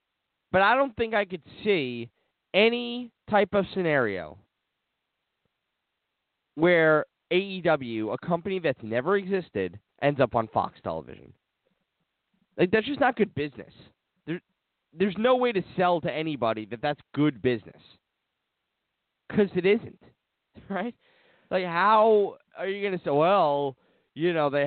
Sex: male